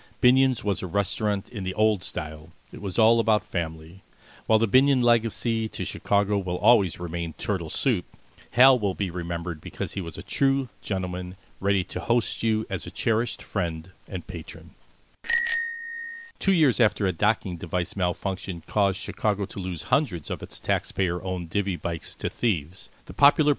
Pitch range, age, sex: 90-115 Hz, 50-69, male